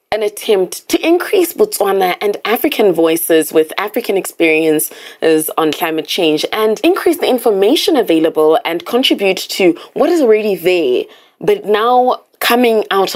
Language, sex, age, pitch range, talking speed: English, female, 20-39, 160-250 Hz, 135 wpm